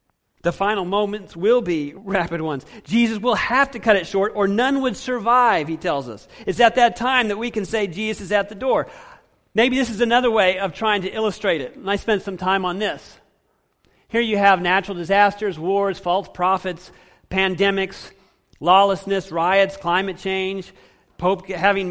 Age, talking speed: 40-59, 180 wpm